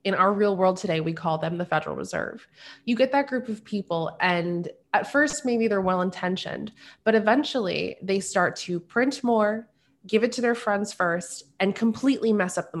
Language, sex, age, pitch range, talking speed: English, female, 20-39, 165-215 Hz, 190 wpm